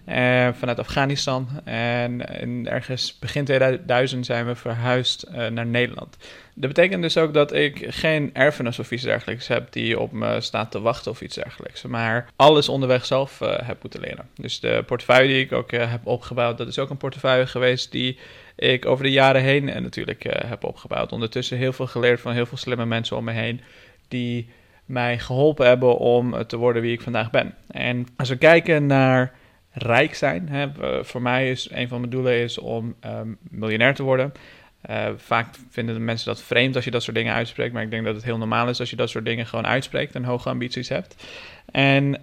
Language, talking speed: Dutch, 200 wpm